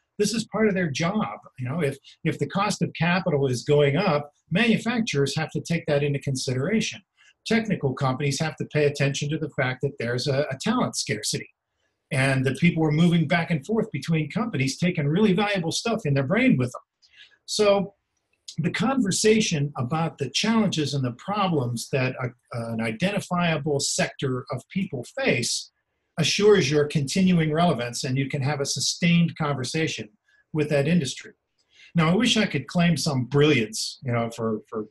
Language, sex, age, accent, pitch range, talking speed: English, male, 50-69, American, 130-175 Hz, 170 wpm